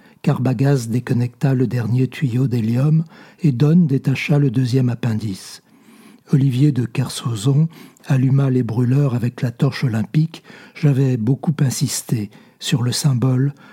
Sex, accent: male, French